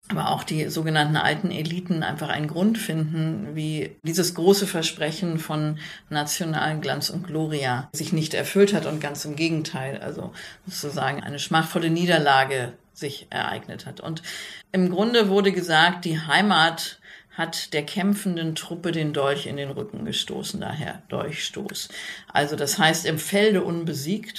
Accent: German